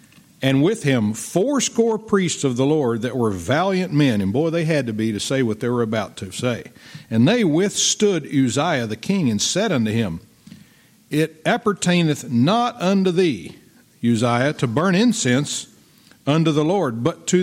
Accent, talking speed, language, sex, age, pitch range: American, 170 wpm, English, male, 50-69, 120-165 Hz